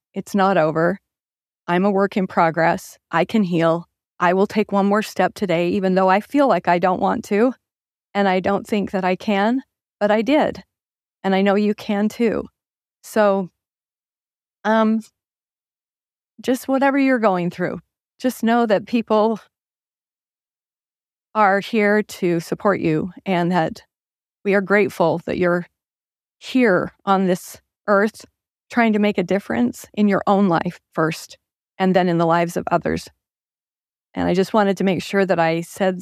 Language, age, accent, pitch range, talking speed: English, 40-59, American, 180-215 Hz, 160 wpm